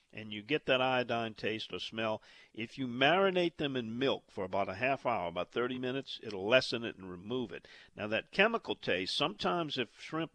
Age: 50-69